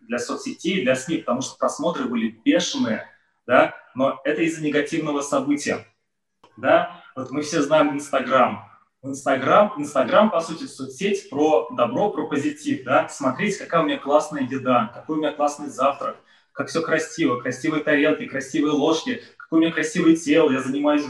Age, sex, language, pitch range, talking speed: 20-39, male, Russian, 135-190 Hz, 155 wpm